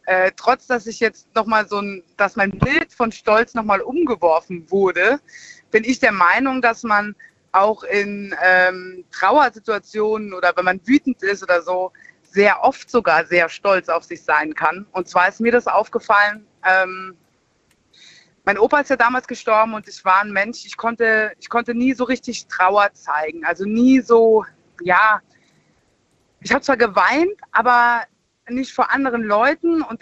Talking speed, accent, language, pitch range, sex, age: 170 wpm, German, German, 195-250 Hz, female, 30-49